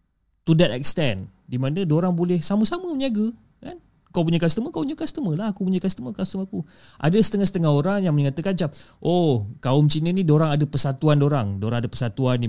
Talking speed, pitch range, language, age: 200 wpm, 125-175 Hz, Malay, 30-49